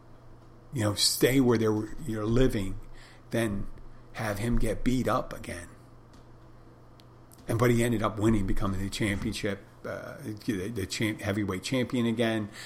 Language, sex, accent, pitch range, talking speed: English, male, American, 105-120 Hz, 135 wpm